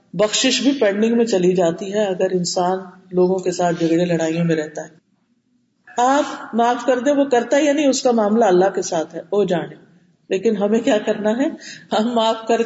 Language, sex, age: Urdu, female, 40-59